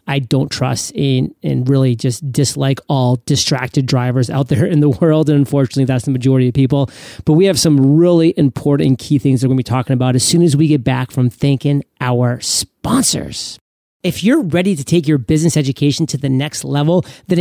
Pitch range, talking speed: 145-175 Hz, 205 wpm